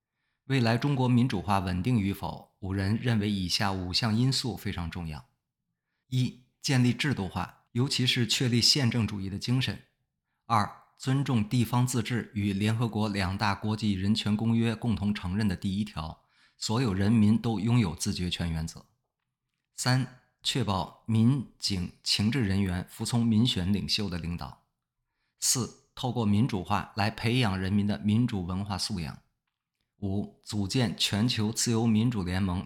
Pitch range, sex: 100-120 Hz, male